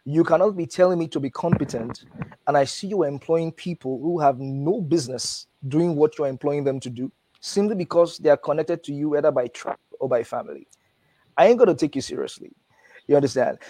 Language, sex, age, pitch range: English, male, 20-39, 135-165 Hz